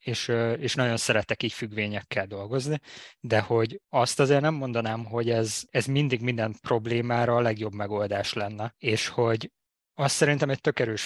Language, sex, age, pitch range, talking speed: Hungarian, male, 20-39, 110-135 Hz, 155 wpm